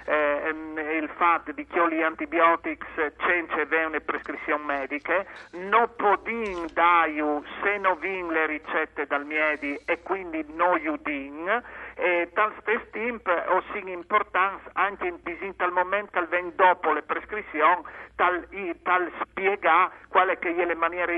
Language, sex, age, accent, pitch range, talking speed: Italian, male, 50-69, native, 160-200 Hz, 145 wpm